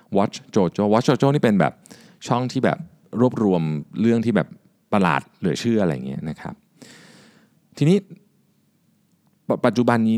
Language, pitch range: Thai, 90-130 Hz